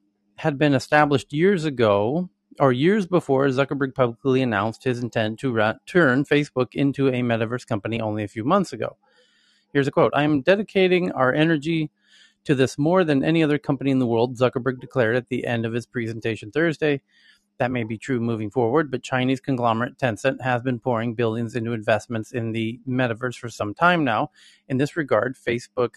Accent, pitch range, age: American, 115-145 Hz, 30-49